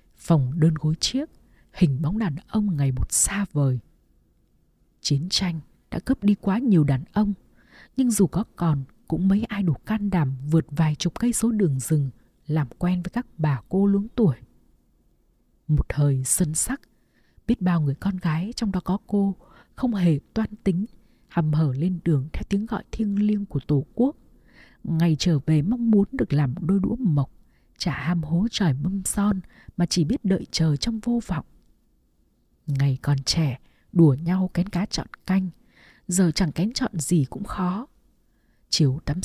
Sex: female